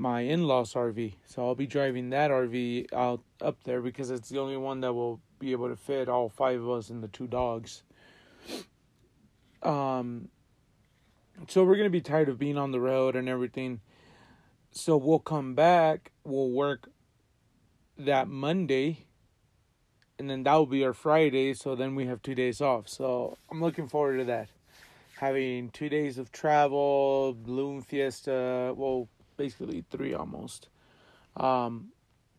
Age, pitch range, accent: 30-49, 125-145 Hz, American